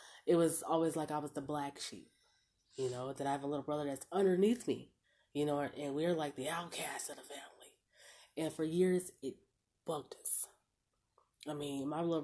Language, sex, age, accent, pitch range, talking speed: English, female, 20-39, American, 145-175 Hz, 195 wpm